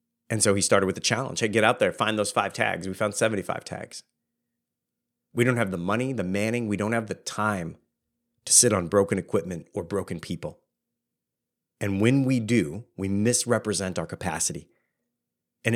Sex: male